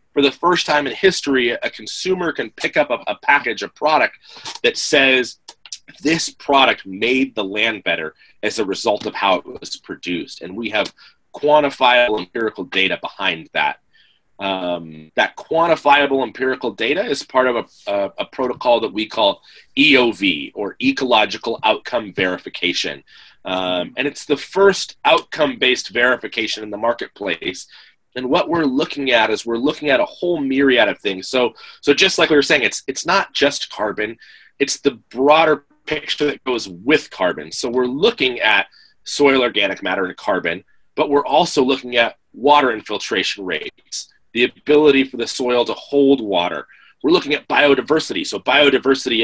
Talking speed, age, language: 165 wpm, 30-49, English